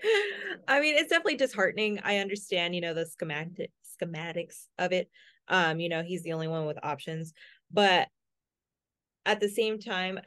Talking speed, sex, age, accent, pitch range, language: 165 wpm, female, 20-39, American, 160-195 Hz, English